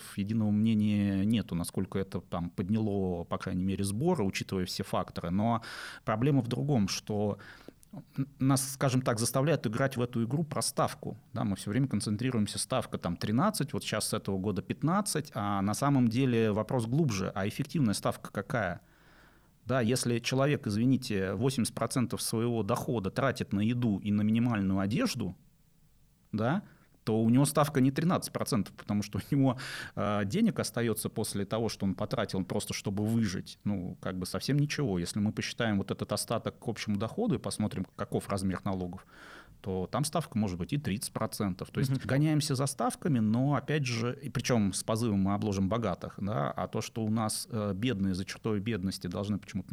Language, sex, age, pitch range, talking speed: Russian, male, 30-49, 100-130 Hz, 170 wpm